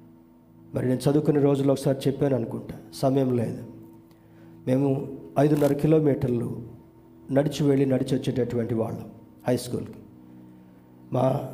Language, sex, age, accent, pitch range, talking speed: Telugu, male, 50-69, native, 115-140 Hz, 105 wpm